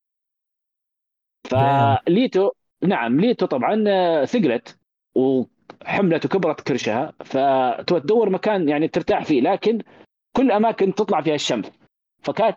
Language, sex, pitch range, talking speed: Arabic, male, 135-195 Hz, 95 wpm